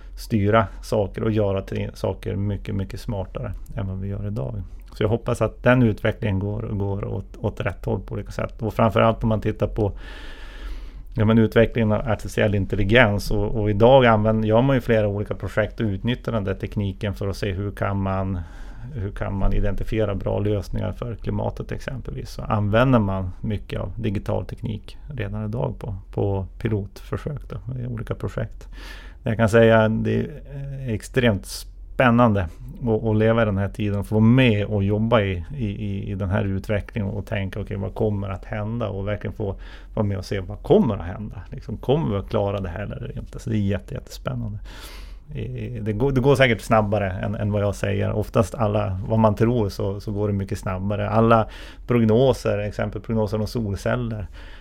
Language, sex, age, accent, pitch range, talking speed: Swedish, male, 30-49, native, 100-115 Hz, 190 wpm